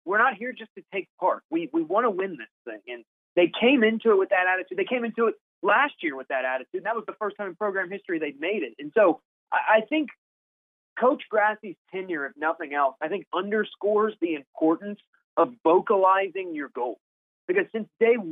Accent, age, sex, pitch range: American, 30-49, male, 165-240 Hz